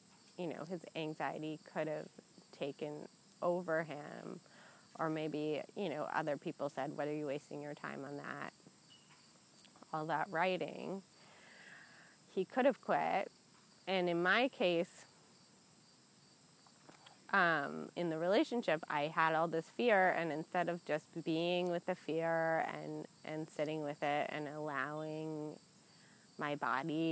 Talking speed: 135 wpm